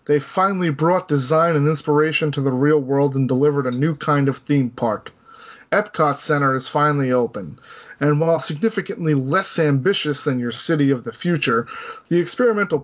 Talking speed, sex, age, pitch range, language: 170 wpm, male, 20-39, 140-180 Hz, English